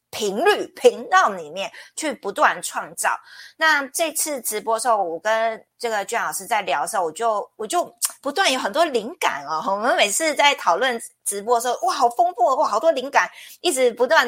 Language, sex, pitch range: Chinese, female, 200-320 Hz